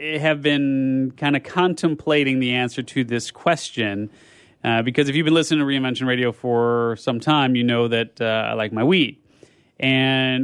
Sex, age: male, 30-49